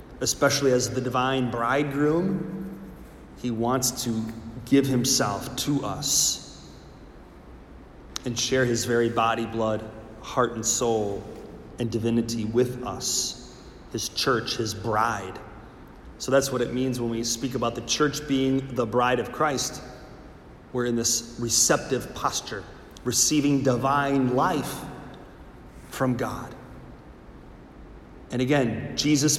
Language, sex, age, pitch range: English, male, 30-49, 115-145 Hz